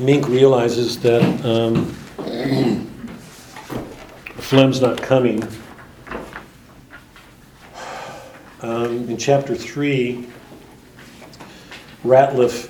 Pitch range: 110-125 Hz